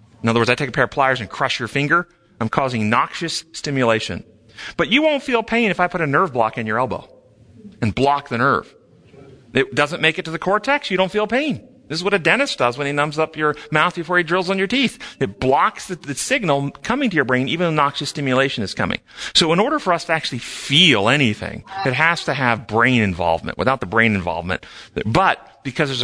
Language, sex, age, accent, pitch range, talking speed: English, male, 40-59, American, 120-165 Hz, 235 wpm